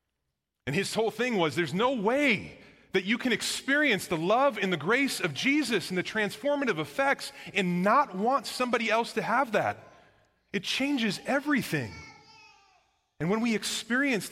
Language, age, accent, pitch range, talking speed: English, 30-49, American, 105-165 Hz, 160 wpm